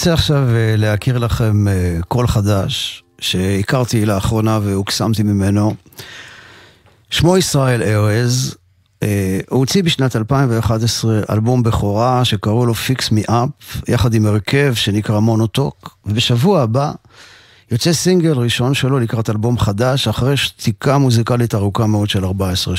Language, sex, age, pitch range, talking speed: Hebrew, male, 50-69, 105-135 Hz, 120 wpm